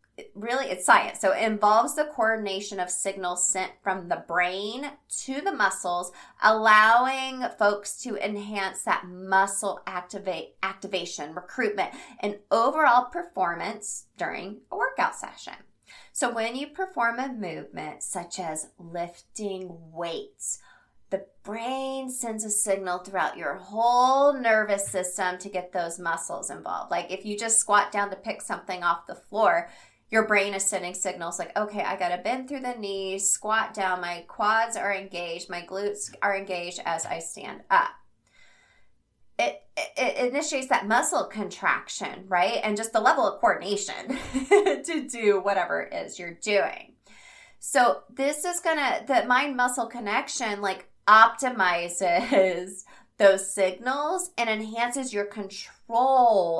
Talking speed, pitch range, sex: 145 wpm, 185-250 Hz, female